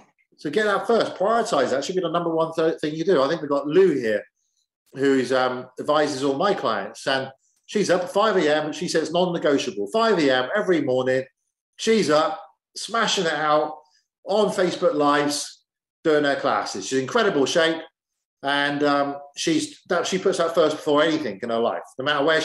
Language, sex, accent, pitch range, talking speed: English, male, British, 135-185 Hz, 195 wpm